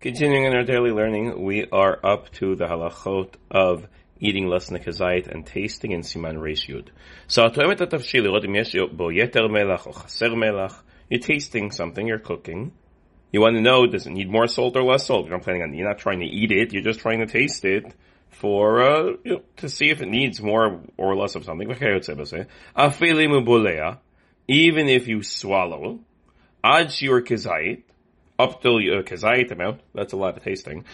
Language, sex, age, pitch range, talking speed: English, male, 30-49, 90-130 Hz, 170 wpm